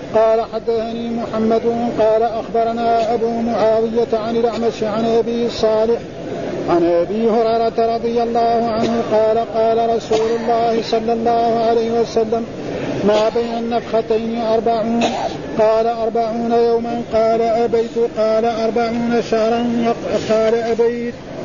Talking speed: 110 wpm